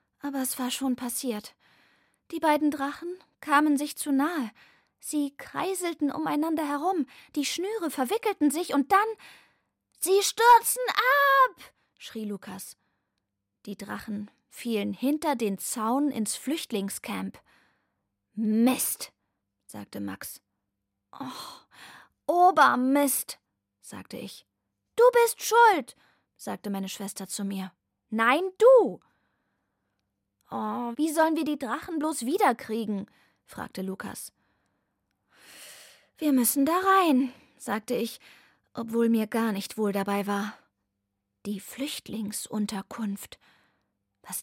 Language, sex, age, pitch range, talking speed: German, female, 20-39, 195-295 Hz, 105 wpm